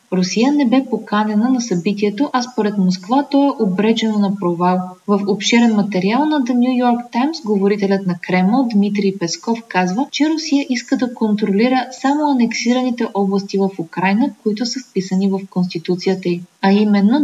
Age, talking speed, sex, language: 20-39, 160 wpm, female, Bulgarian